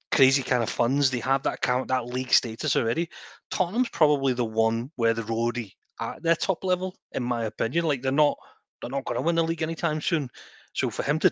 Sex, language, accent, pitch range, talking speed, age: male, English, British, 115-145 Hz, 230 wpm, 30-49